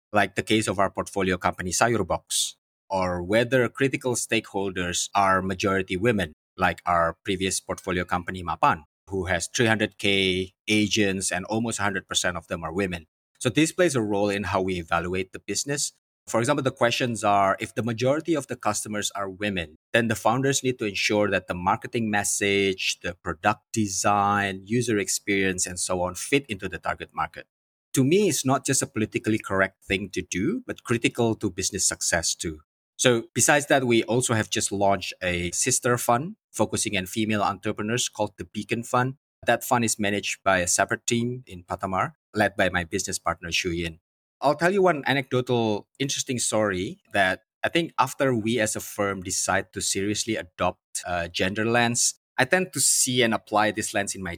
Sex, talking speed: male, 180 wpm